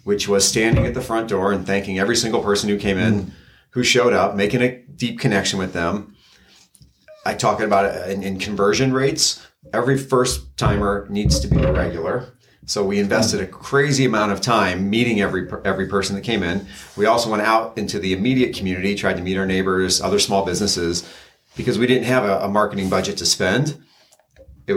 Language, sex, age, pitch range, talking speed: English, male, 40-59, 100-120 Hz, 195 wpm